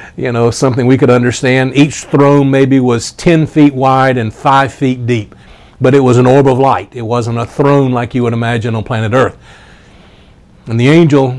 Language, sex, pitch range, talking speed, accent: English, male, 120-140 Hz, 200 wpm, American